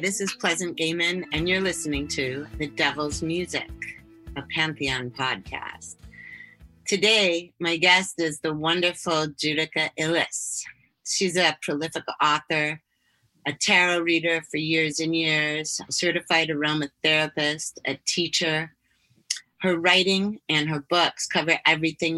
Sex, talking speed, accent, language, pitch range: female, 120 wpm, American, English, 145-170 Hz